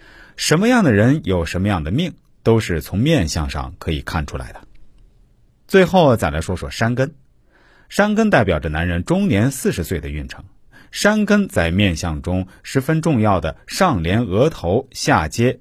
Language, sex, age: Chinese, male, 50-69